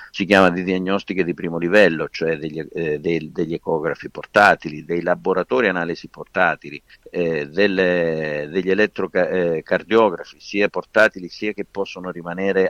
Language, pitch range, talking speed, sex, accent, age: Italian, 85-105 Hz, 125 wpm, male, native, 50-69